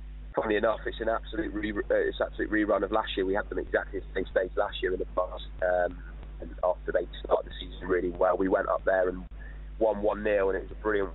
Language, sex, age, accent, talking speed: English, male, 20-39, British, 255 wpm